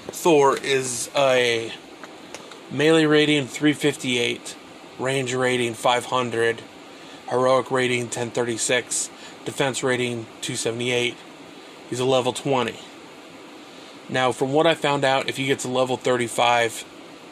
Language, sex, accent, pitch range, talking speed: English, male, American, 120-140 Hz, 105 wpm